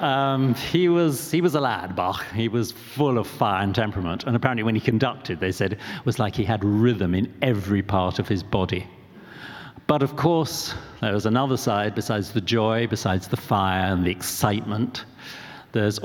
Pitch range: 95-125 Hz